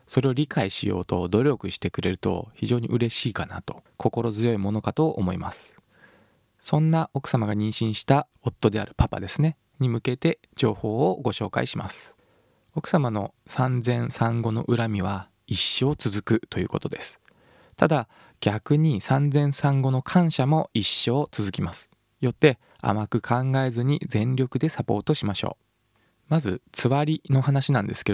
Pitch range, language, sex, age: 110-140 Hz, Japanese, male, 20-39